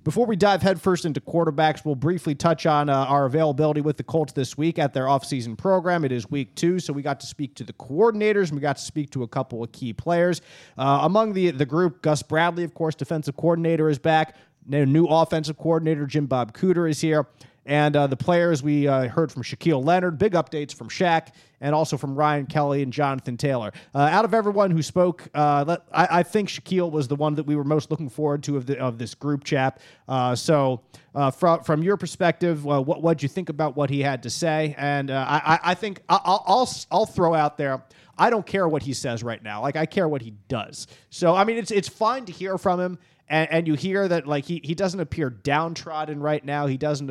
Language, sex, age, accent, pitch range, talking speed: English, male, 30-49, American, 140-170 Hz, 235 wpm